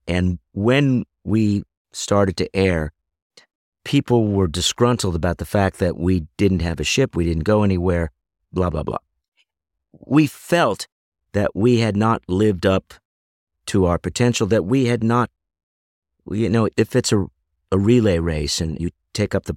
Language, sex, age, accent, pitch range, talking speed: English, male, 50-69, American, 80-110 Hz, 165 wpm